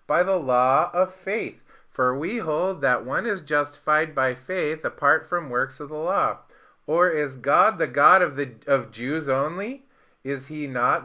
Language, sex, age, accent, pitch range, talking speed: English, male, 30-49, American, 115-150 Hz, 180 wpm